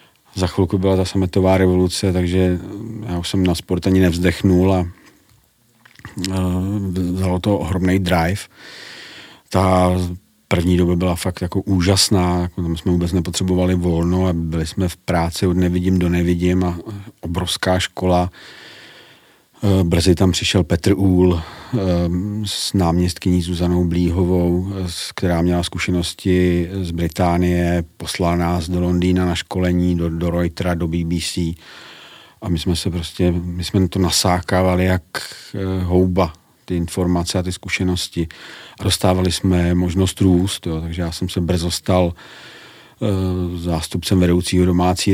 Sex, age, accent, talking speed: male, 40-59, native, 135 wpm